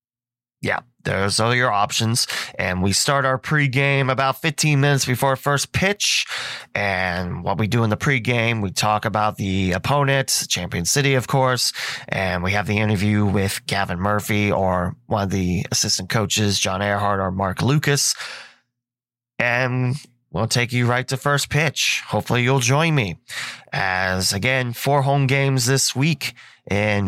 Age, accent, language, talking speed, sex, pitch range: 20-39, American, English, 155 wpm, male, 100-135 Hz